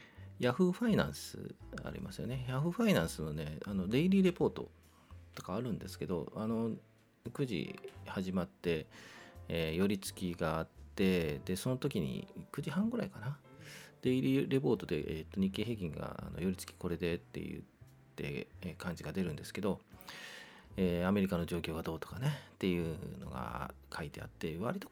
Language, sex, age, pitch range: Japanese, male, 40-59, 85-135 Hz